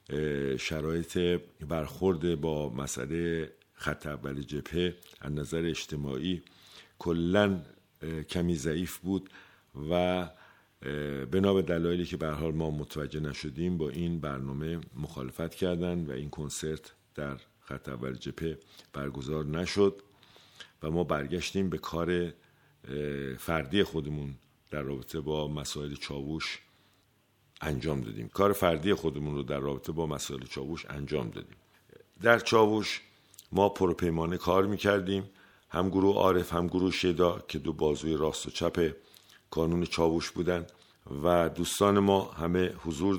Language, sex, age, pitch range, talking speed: Persian, male, 50-69, 75-90 Hz, 120 wpm